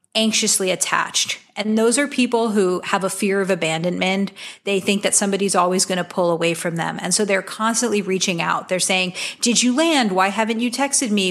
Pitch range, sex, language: 185-220 Hz, female, English